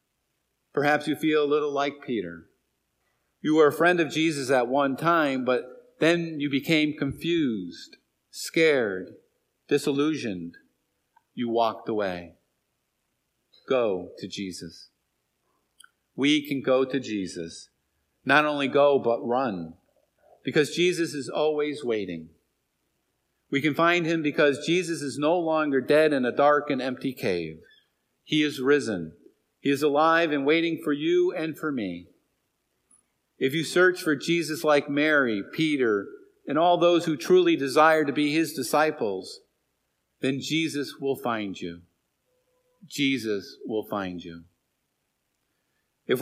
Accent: American